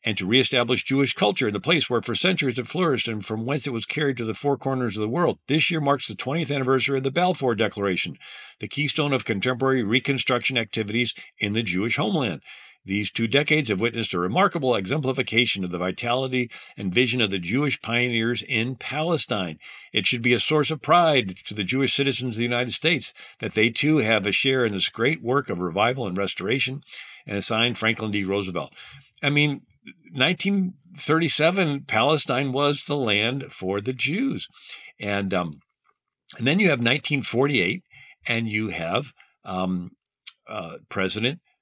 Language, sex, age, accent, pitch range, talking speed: English, male, 50-69, American, 110-140 Hz, 175 wpm